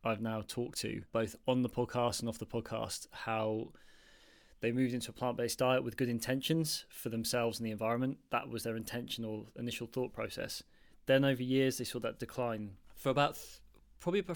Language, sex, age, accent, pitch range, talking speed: English, male, 20-39, British, 115-125 Hz, 190 wpm